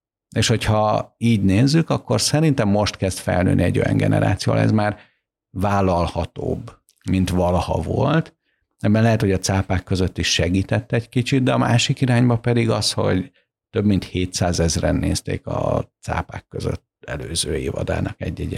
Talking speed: 150 wpm